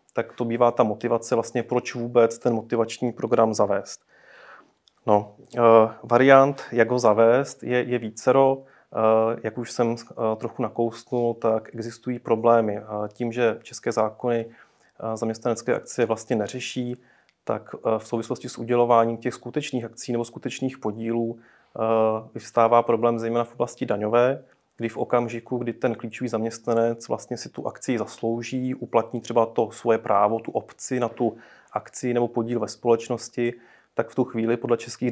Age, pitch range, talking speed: 30-49, 115-120 Hz, 145 wpm